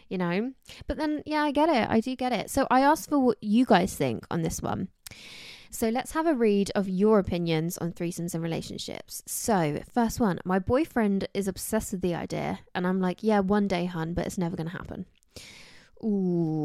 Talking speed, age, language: 215 wpm, 20-39, English